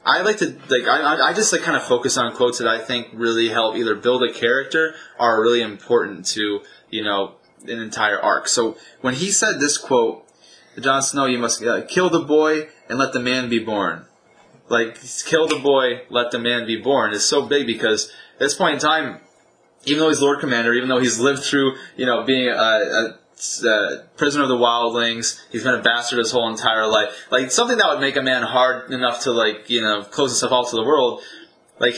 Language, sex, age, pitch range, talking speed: English, male, 20-39, 115-145 Hz, 225 wpm